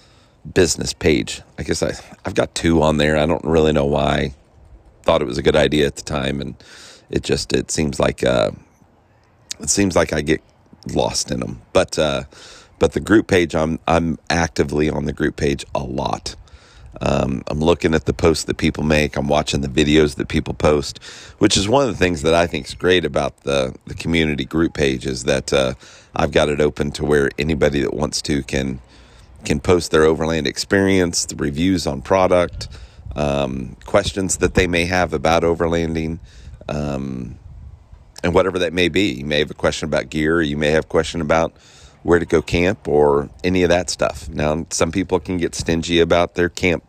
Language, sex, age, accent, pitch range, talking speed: English, male, 40-59, American, 75-85 Hz, 200 wpm